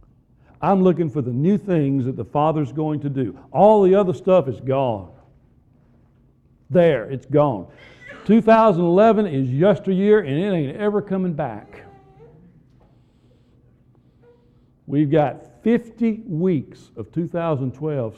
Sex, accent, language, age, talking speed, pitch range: male, American, English, 60-79, 120 wpm, 125-185 Hz